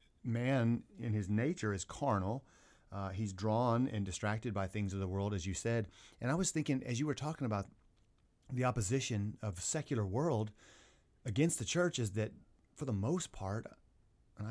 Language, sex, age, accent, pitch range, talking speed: English, male, 30-49, American, 100-120 Hz, 180 wpm